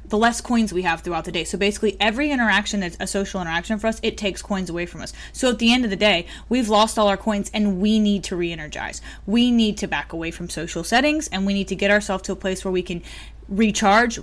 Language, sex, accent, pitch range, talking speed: English, female, American, 195-255 Hz, 260 wpm